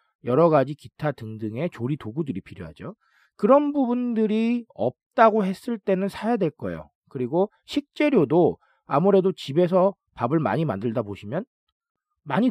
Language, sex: Korean, male